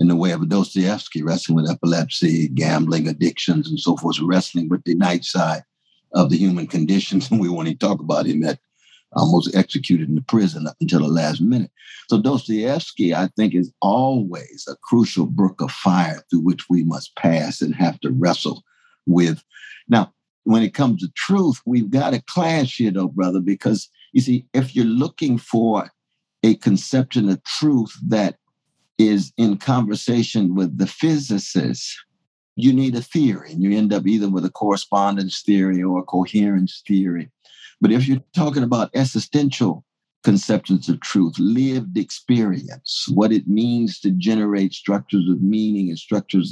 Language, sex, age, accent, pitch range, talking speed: English, male, 60-79, American, 90-115 Hz, 170 wpm